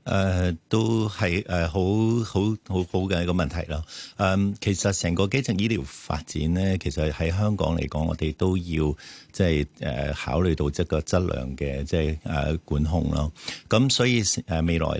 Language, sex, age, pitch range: Chinese, male, 50-69, 80-95 Hz